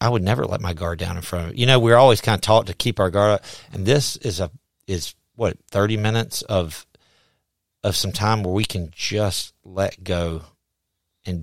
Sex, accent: male, American